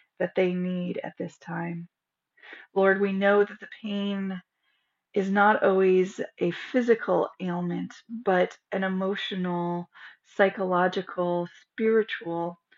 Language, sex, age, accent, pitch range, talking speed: English, female, 30-49, American, 180-200 Hz, 110 wpm